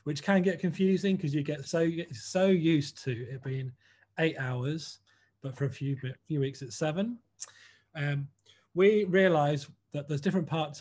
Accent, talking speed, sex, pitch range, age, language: British, 170 wpm, male, 130-165 Hz, 30-49, English